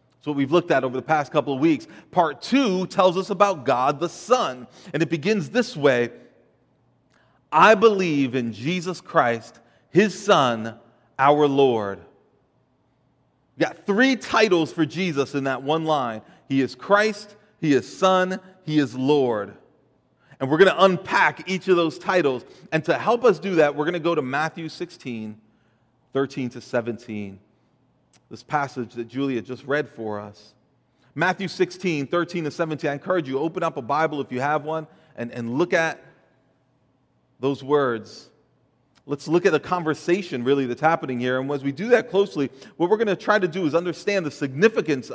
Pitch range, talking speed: 130-180 Hz, 175 wpm